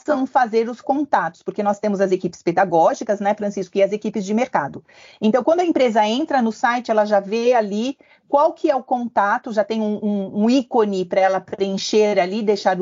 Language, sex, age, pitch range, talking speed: Portuguese, female, 40-59, 200-250 Hz, 205 wpm